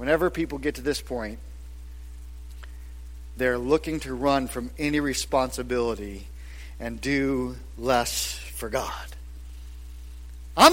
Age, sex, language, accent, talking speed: 50-69, male, English, American, 105 wpm